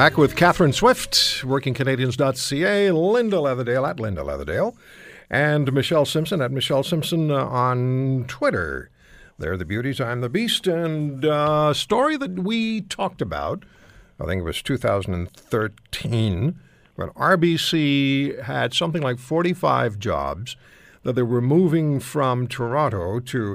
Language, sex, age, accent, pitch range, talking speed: English, male, 60-79, American, 125-175 Hz, 135 wpm